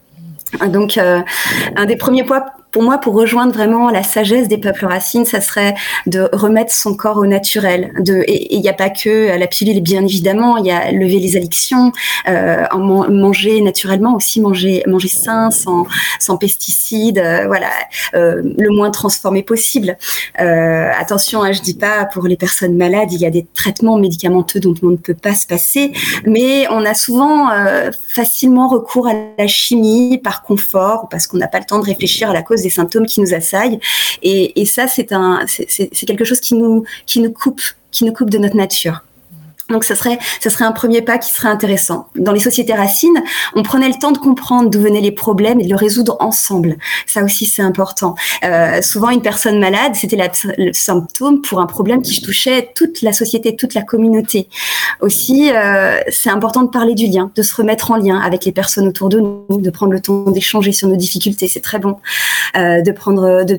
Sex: female